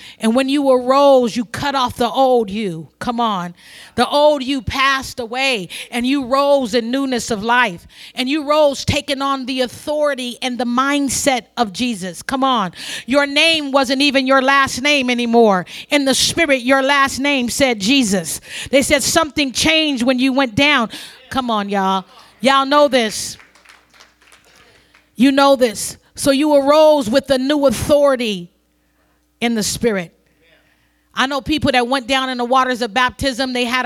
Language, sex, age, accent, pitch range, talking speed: English, female, 40-59, American, 240-280 Hz, 165 wpm